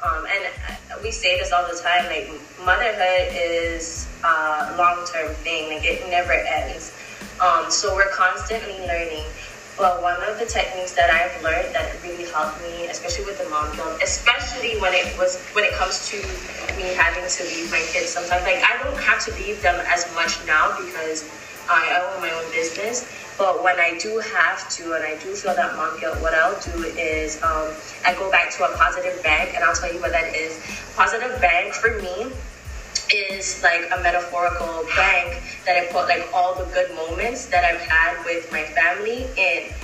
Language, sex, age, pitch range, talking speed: English, female, 20-39, 165-195 Hz, 195 wpm